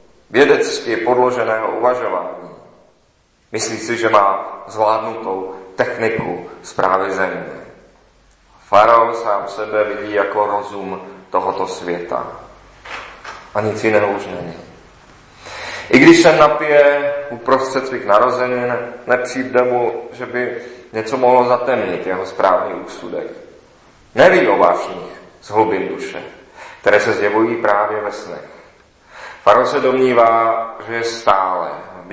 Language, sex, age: Czech, male, 40-59